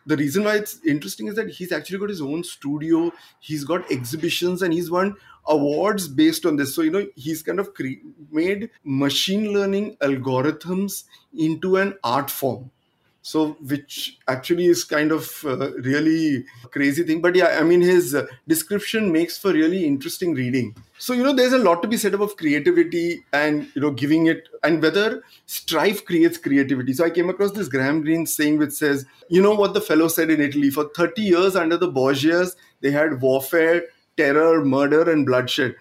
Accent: Indian